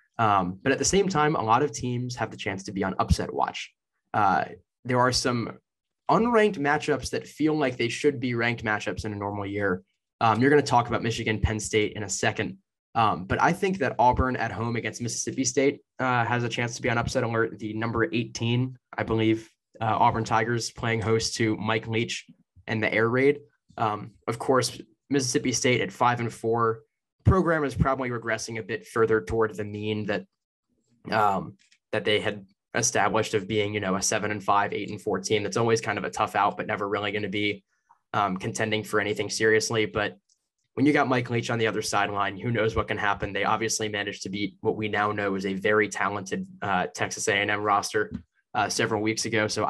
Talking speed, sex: 210 wpm, male